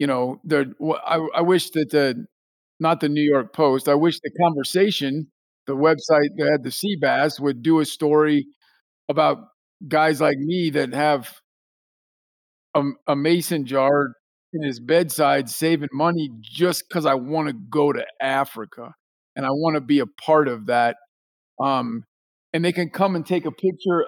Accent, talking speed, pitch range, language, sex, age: American, 170 wpm, 145-195 Hz, English, male, 50-69